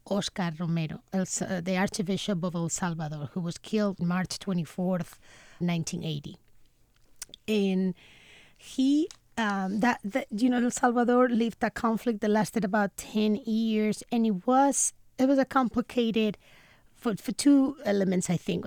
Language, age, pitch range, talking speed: English, 30-49, 170-215 Hz, 145 wpm